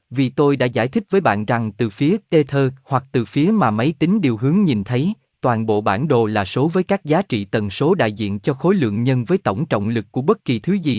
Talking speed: 270 wpm